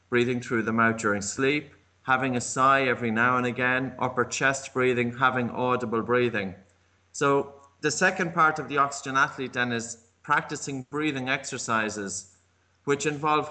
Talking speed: 150 wpm